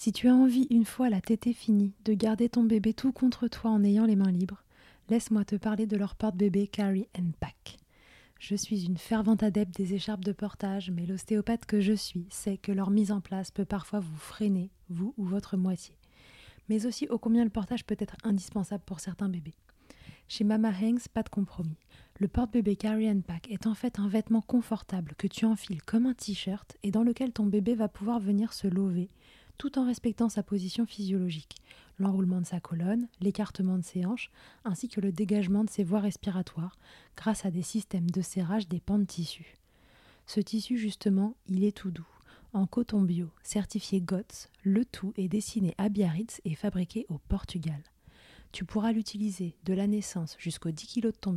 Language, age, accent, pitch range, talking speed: French, 20-39, French, 185-220 Hz, 195 wpm